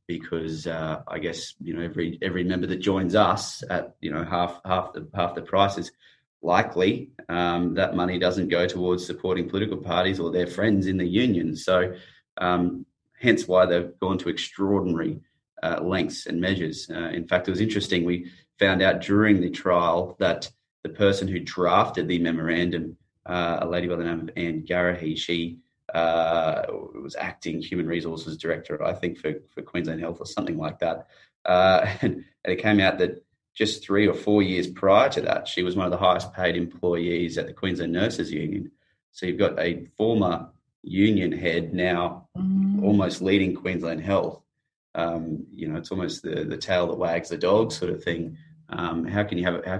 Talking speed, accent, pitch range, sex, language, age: 185 wpm, Australian, 85-95 Hz, male, English, 20-39